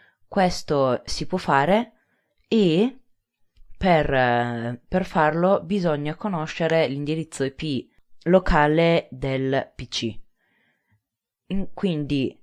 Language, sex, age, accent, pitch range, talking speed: Italian, female, 20-39, native, 130-175 Hz, 75 wpm